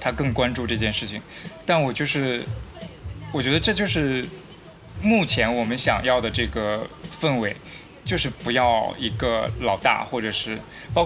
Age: 20-39